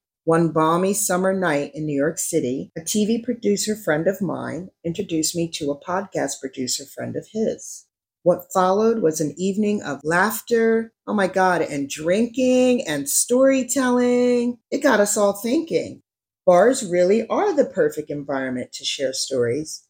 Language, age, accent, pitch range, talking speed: English, 40-59, American, 145-205 Hz, 155 wpm